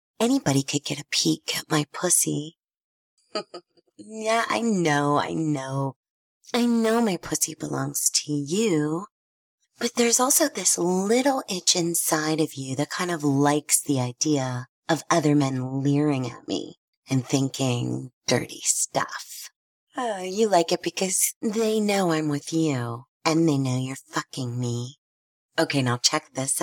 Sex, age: female, 30-49